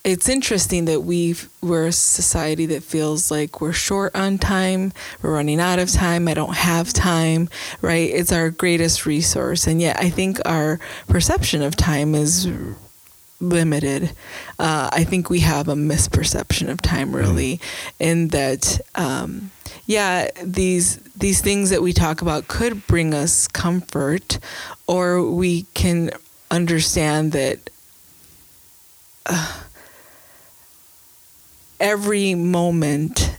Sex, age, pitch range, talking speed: female, 20-39, 150-185 Hz, 130 wpm